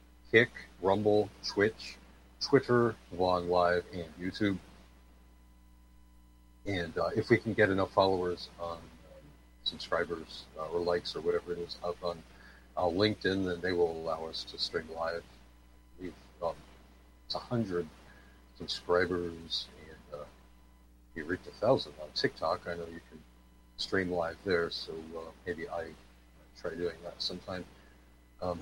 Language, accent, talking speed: English, American, 145 wpm